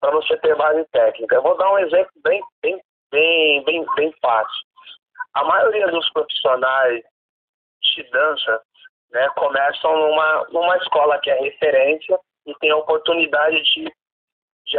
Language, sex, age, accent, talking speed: Portuguese, male, 40-59, Brazilian, 145 wpm